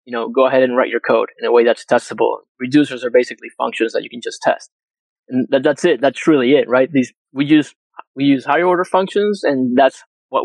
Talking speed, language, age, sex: 235 wpm, English, 20-39, male